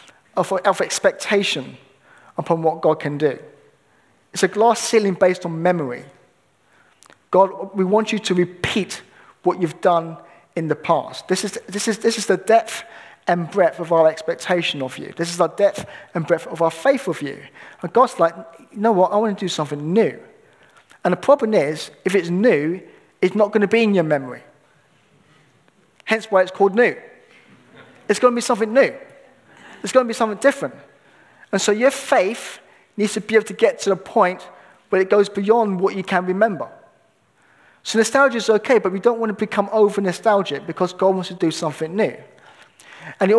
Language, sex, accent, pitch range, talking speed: English, male, British, 170-215 Hz, 185 wpm